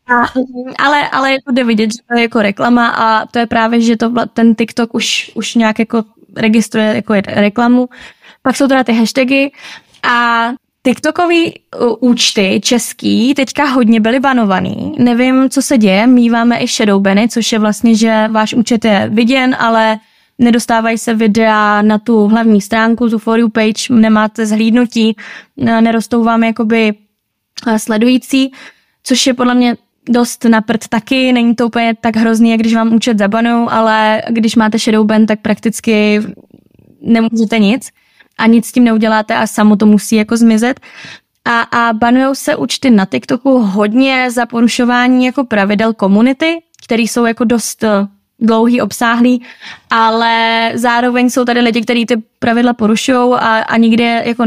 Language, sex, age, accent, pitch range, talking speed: Czech, female, 20-39, native, 220-245 Hz, 155 wpm